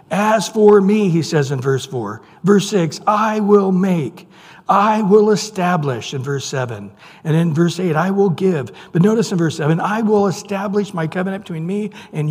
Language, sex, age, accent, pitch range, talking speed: English, male, 60-79, American, 145-195 Hz, 190 wpm